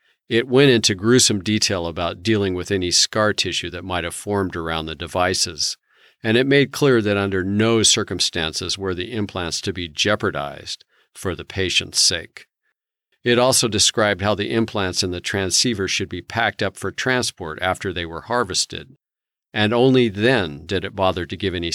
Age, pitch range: 50-69, 85-105 Hz